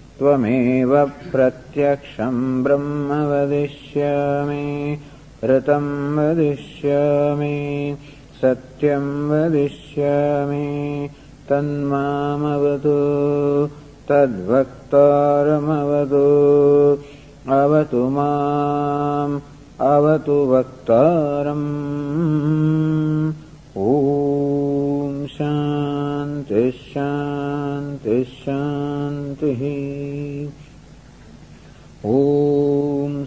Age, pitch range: 50-69, 140-145 Hz